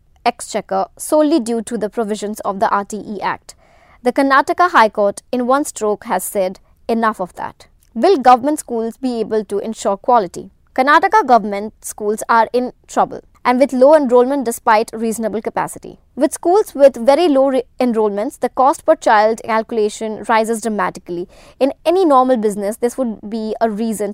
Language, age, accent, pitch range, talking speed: English, 20-39, Indian, 215-270 Hz, 165 wpm